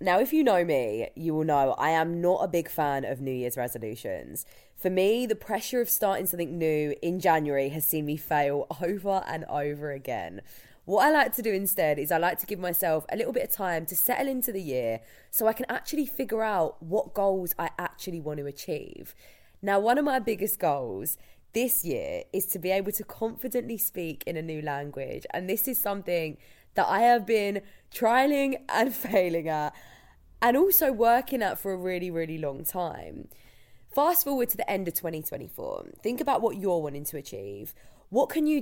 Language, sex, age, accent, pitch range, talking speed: English, female, 20-39, British, 160-225 Hz, 200 wpm